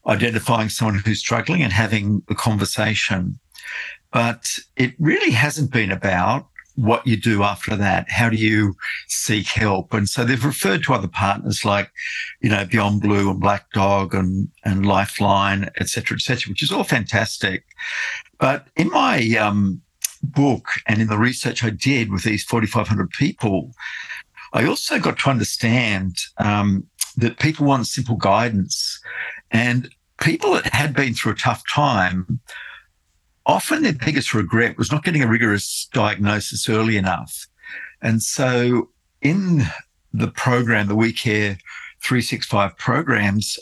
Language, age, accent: English, 50-69, Australian